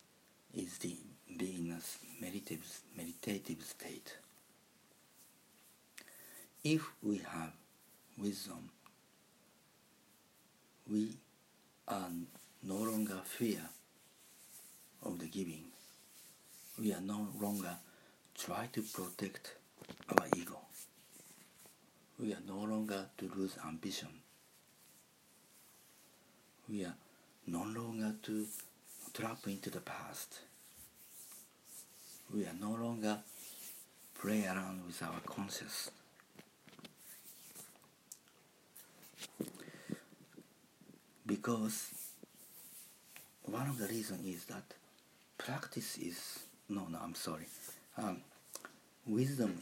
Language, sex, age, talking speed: English, male, 50-69, 80 wpm